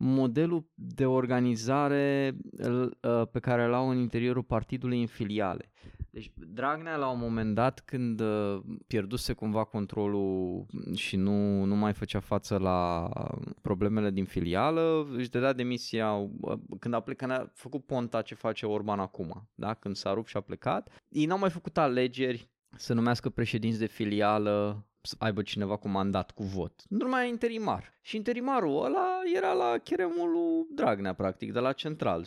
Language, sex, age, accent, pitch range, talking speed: Romanian, male, 20-39, native, 100-135 Hz, 150 wpm